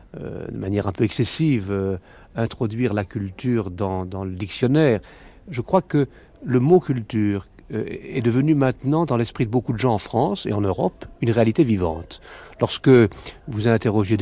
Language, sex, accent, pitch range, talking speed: French, male, French, 95-130 Hz, 180 wpm